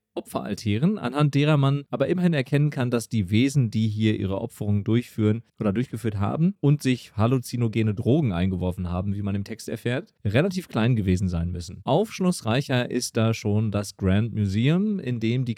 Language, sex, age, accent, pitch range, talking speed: German, male, 40-59, German, 105-130 Hz, 175 wpm